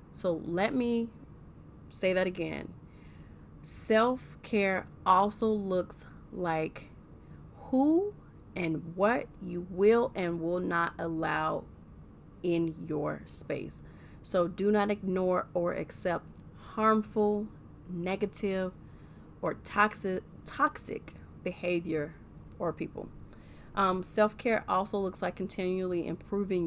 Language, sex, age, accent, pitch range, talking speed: English, female, 30-49, American, 170-205 Hz, 100 wpm